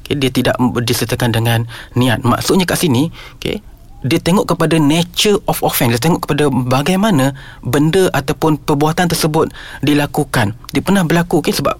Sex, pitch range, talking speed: male, 130-170 Hz, 160 wpm